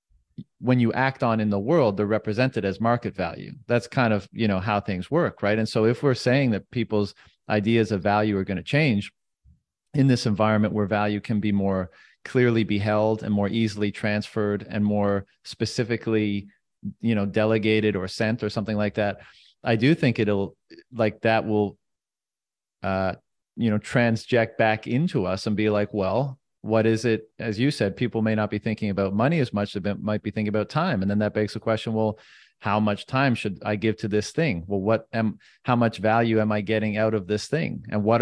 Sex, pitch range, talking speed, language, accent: male, 105-120 Hz, 205 wpm, English, American